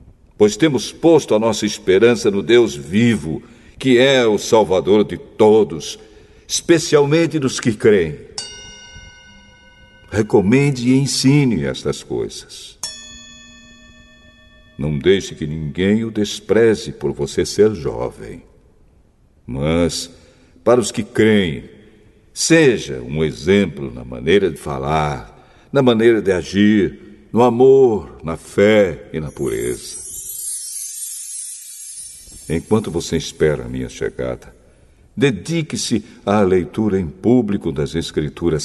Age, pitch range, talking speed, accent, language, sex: 60-79, 85-125 Hz, 110 wpm, Brazilian, Portuguese, male